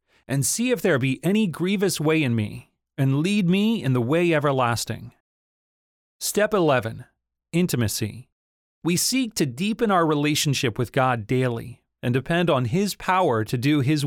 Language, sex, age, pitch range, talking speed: English, male, 30-49, 120-175 Hz, 160 wpm